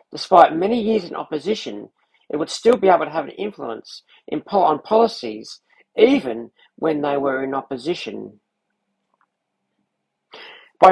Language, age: English, 50-69